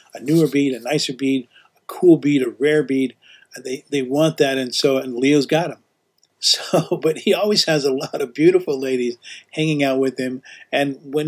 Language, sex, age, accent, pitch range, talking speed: English, male, 50-69, American, 130-165 Hz, 200 wpm